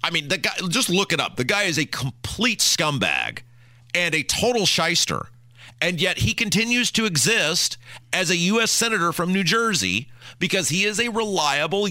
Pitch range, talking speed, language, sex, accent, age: 130-195 Hz, 180 wpm, English, male, American, 40-59